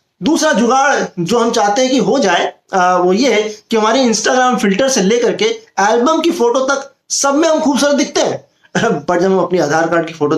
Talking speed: 220 wpm